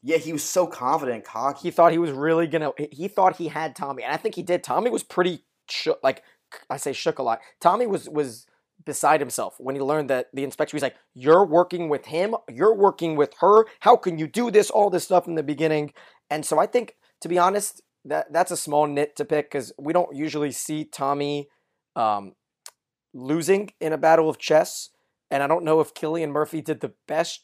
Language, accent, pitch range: English, American, 135-165 Hz